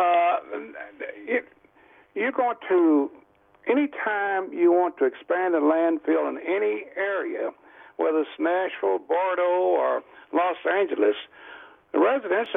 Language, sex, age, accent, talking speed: English, male, 60-79, American, 115 wpm